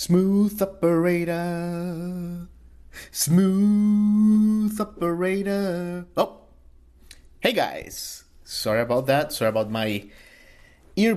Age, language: 30-49, English